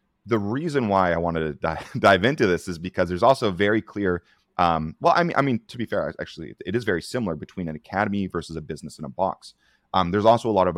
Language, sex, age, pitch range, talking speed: English, male, 30-49, 80-100 Hz, 245 wpm